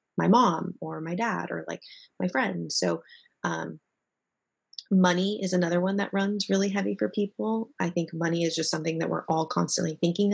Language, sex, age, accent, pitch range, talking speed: English, female, 20-39, American, 165-195 Hz, 185 wpm